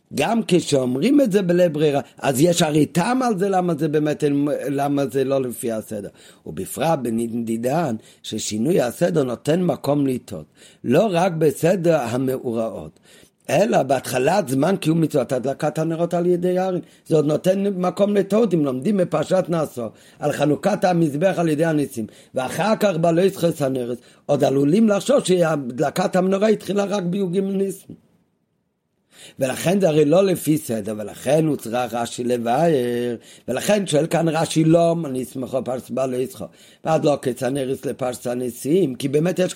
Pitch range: 125-175 Hz